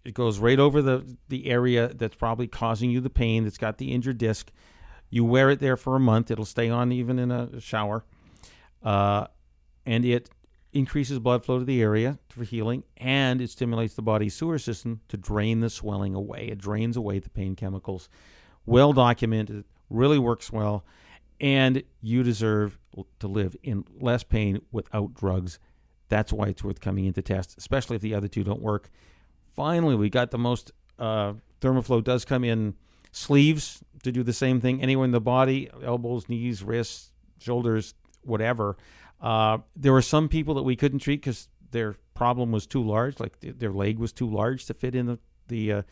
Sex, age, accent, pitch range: male, 50-69, American, 105-125 Hz